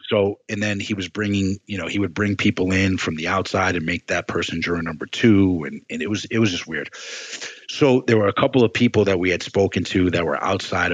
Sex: male